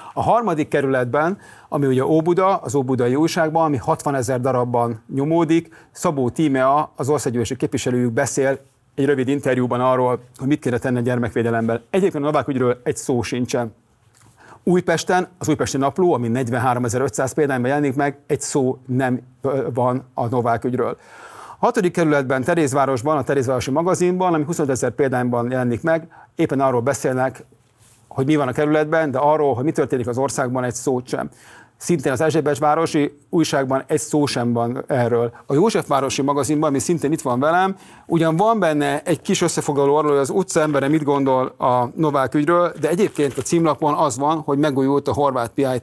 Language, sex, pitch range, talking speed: Hungarian, male, 130-160 Hz, 165 wpm